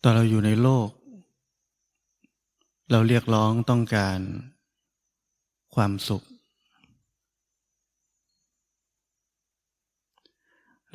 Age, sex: 20-39, male